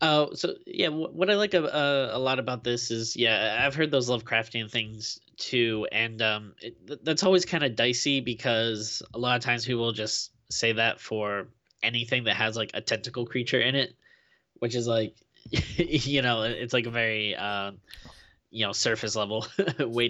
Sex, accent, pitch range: male, American, 105-125 Hz